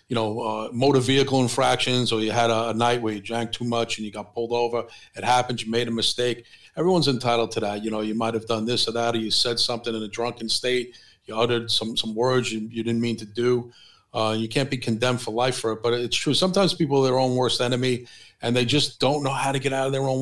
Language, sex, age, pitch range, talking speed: English, male, 40-59, 115-140 Hz, 270 wpm